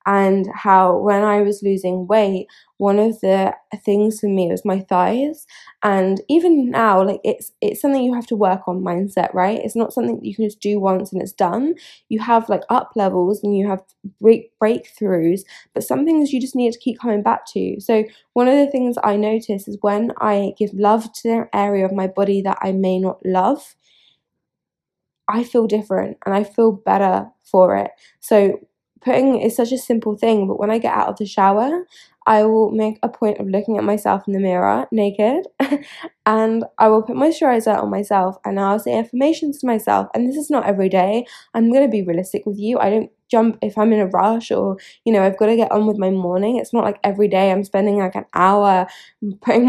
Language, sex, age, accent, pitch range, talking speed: English, female, 20-39, British, 195-230 Hz, 215 wpm